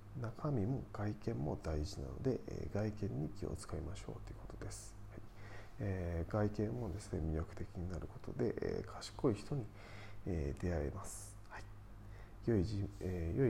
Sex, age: male, 40-59